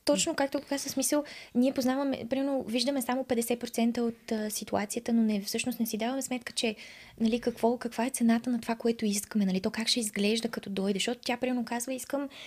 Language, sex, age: Bulgarian, female, 20-39